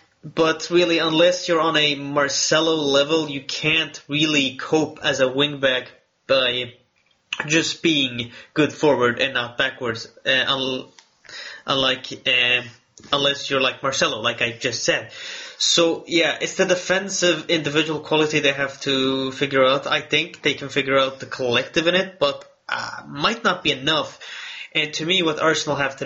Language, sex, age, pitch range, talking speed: English, male, 20-39, 135-160 Hz, 160 wpm